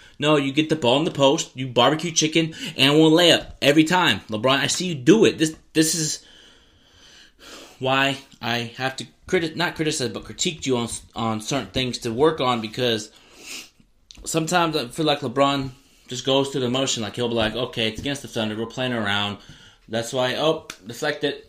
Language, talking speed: English, 200 wpm